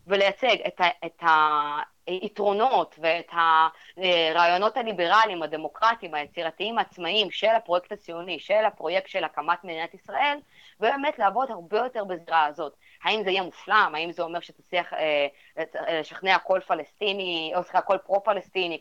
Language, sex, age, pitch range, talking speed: Hebrew, female, 20-39, 165-215 Hz, 130 wpm